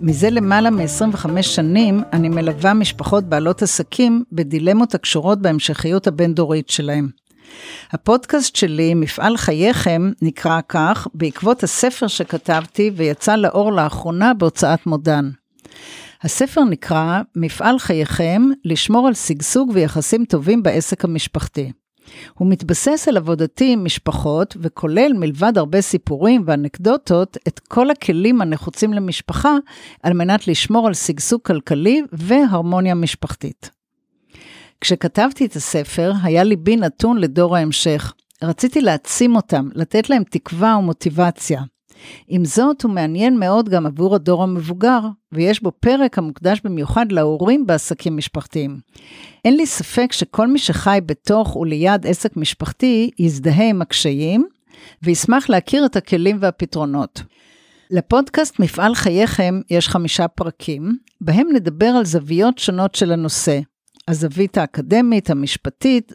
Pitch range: 165-220 Hz